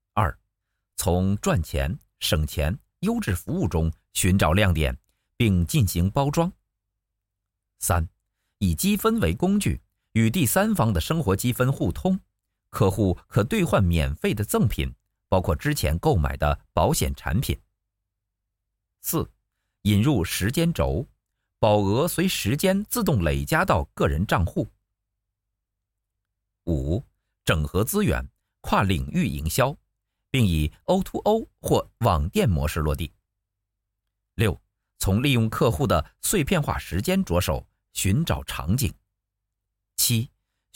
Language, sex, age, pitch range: Chinese, male, 50-69, 90-110 Hz